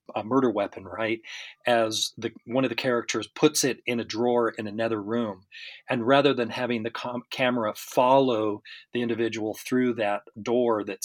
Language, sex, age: English, male, 40-59